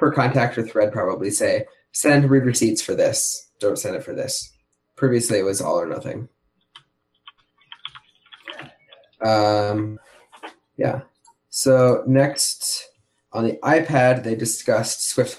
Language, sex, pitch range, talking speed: English, male, 110-135 Hz, 125 wpm